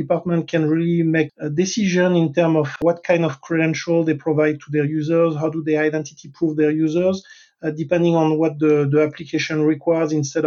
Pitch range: 150-165 Hz